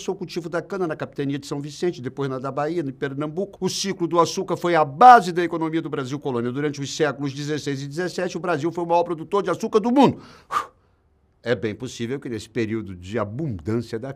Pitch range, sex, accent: 125-175 Hz, male, Brazilian